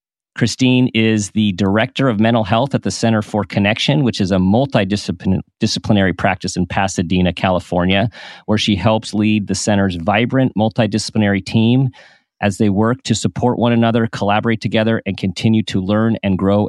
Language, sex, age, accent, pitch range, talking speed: English, male, 40-59, American, 100-125 Hz, 160 wpm